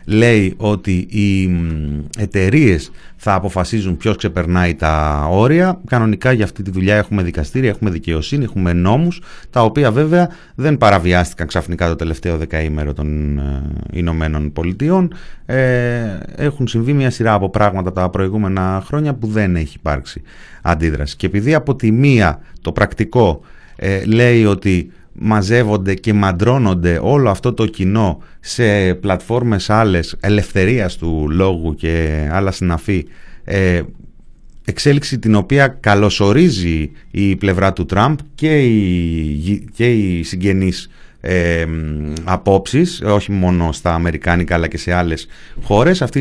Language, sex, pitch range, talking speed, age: Greek, male, 85-125 Hz, 125 wpm, 30-49